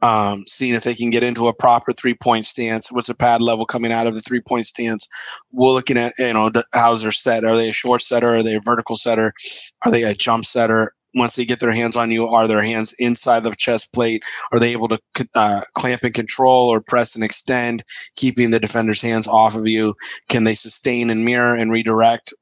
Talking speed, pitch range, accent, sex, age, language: 225 wpm, 110-120 Hz, American, male, 30-49, English